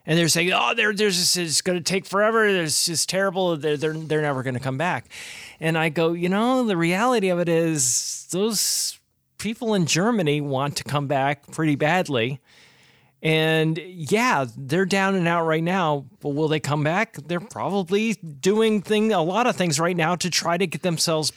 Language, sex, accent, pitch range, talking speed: English, male, American, 145-185 Hz, 195 wpm